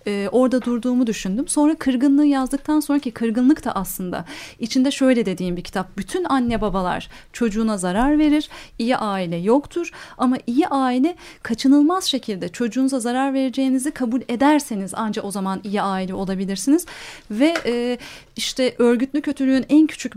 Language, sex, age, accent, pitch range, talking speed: Turkish, female, 30-49, native, 225-295 Hz, 145 wpm